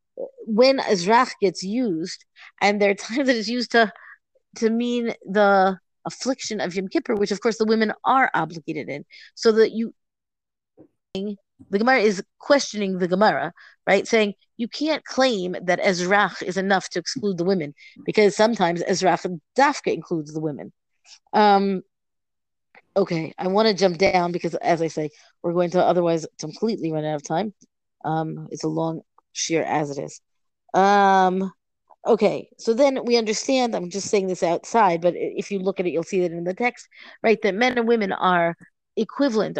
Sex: female